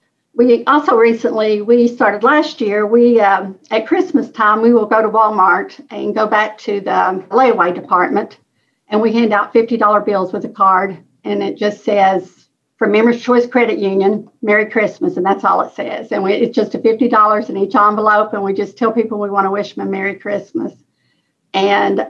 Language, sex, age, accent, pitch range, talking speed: English, female, 60-79, American, 200-230 Hz, 195 wpm